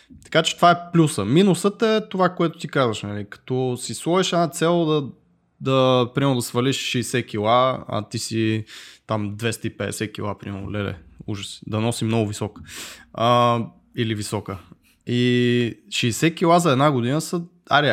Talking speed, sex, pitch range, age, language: 145 wpm, male, 115-150 Hz, 20-39, Bulgarian